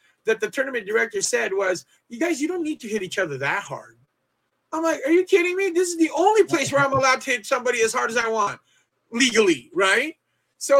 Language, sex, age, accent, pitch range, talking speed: English, male, 30-49, American, 190-275 Hz, 235 wpm